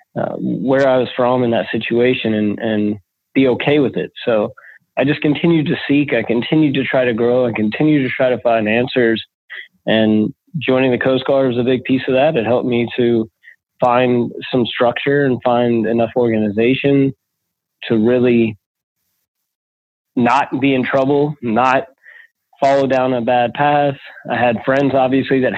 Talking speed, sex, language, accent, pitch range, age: 170 wpm, male, English, American, 115-130 Hz, 20-39